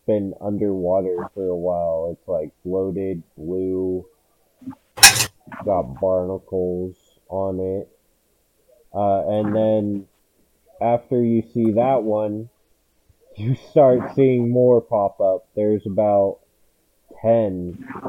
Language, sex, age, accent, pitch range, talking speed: English, male, 30-49, American, 95-125 Hz, 95 wpm